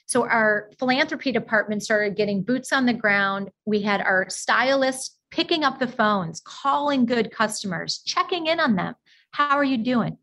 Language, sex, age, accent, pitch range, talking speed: English, female, 30-49, American, 215-290 Hz, 170 wpm